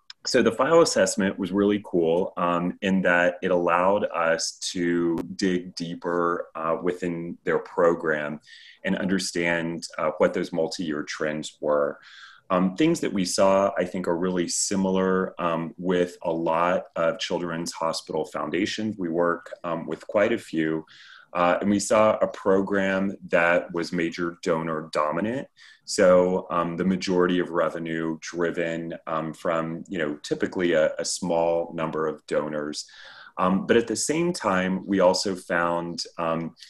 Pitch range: 80-95 Hz